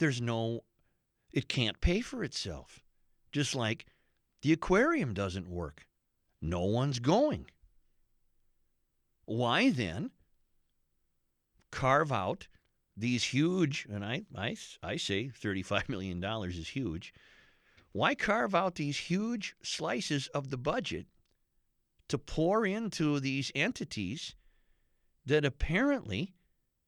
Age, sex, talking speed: 50-69, male, 105 wpm